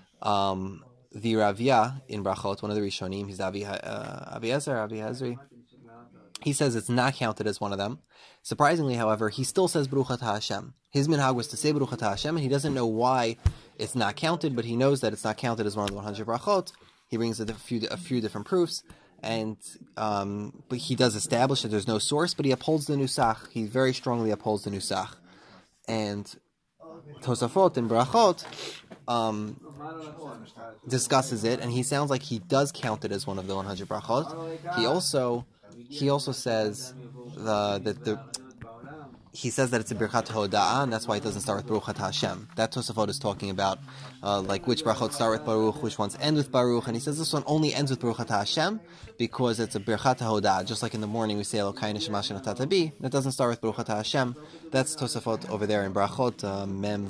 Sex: male